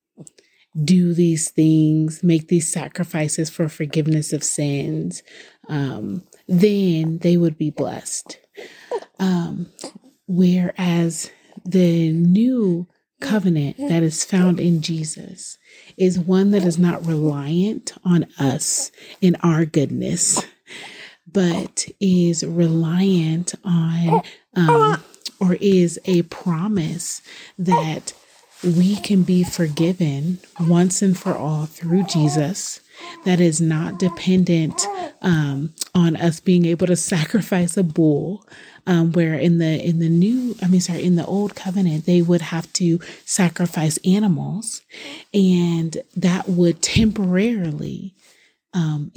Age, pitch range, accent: 30-49, 160-185 Hz, American